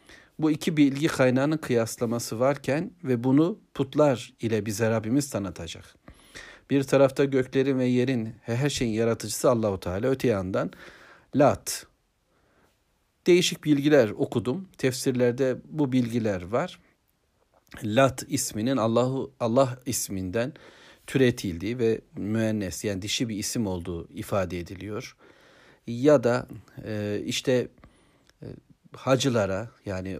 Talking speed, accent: 105 wpm, native